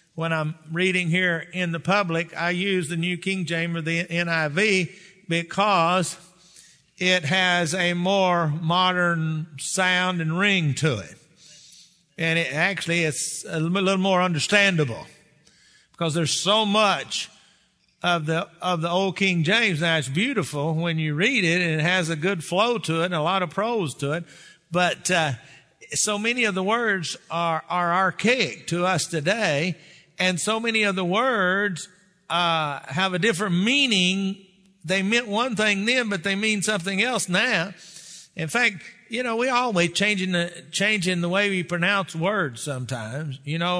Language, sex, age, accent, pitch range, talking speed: English, male, 50-69, American, 165-195 Hz, 165 wpm